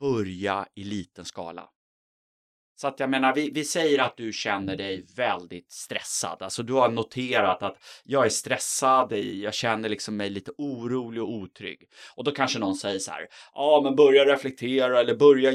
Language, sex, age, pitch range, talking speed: Swedish, male, 30-49, 105-145 Hz, 180 wpm